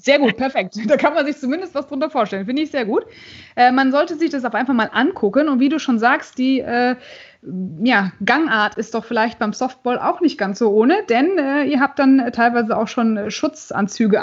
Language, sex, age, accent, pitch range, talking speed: German, female, 20-39, German, 225-280 Hz, 215 wpm